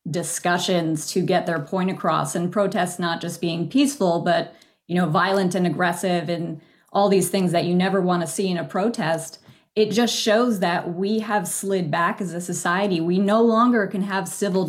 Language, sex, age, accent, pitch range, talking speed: English, female, 30-49, American, 175-220 Hz, 195 wpm